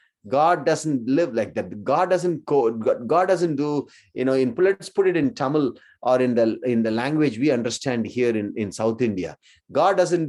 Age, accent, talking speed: 30-49, Indian, 200 wpm